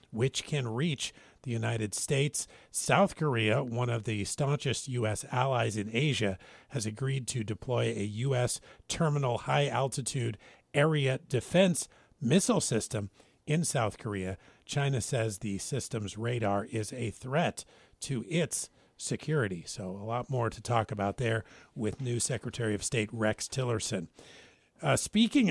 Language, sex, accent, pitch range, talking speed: English, male, American, 115-150 Hz, 140 wpm